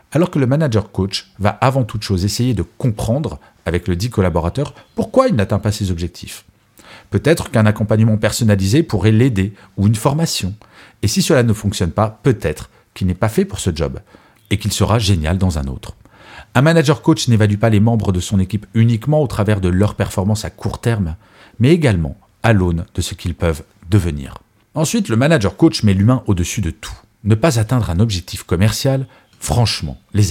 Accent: French